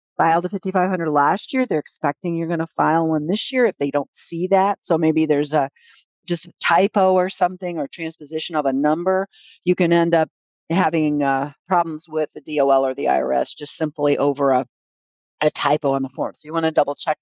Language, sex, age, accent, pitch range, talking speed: English, female, 50-69, American, 145-185 Hz, 215 wpm